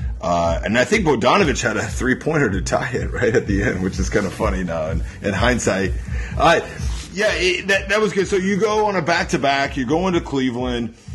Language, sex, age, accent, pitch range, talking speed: English, male, 30-49, American, 110-140 Hz, 225 wpm